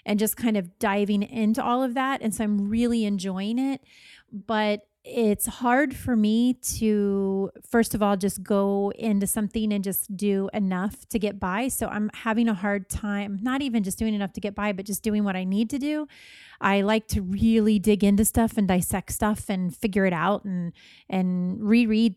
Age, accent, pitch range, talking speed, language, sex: 30-49, American, 195-230 Hz, 200 wpm, English, female